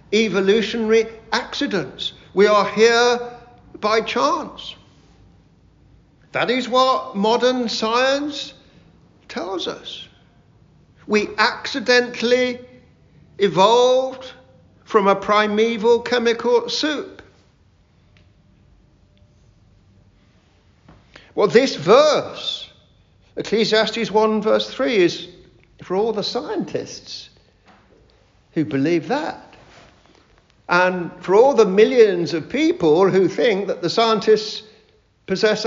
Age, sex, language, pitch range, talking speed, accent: 50-69, male, English, 150-230 Hz, 85 wpm, British